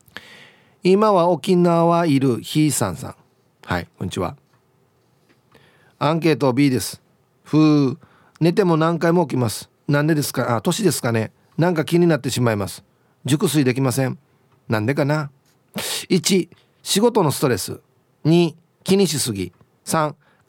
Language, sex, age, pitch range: Japanese, male, 40-59, 125-175 Hz